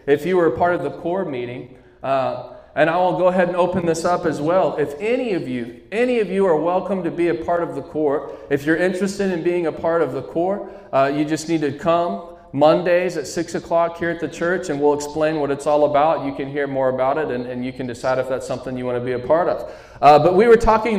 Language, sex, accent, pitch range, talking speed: English, male, American, 150-195 Hz, 265 wpm